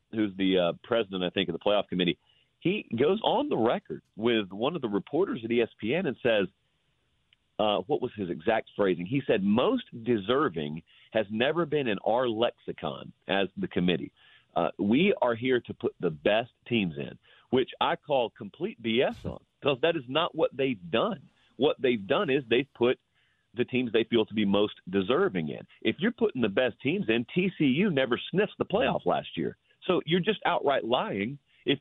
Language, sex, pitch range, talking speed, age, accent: English, male, 115-155 Hz, 190 wpm, 40-59, American